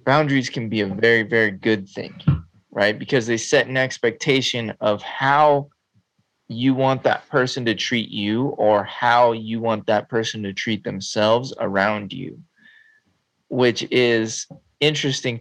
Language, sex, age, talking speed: English, male, 20-39, 145 wpm